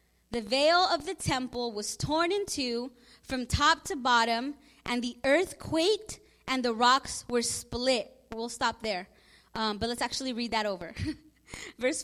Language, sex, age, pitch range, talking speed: English, female, 20-39, 225-300 Hz, 160 wpm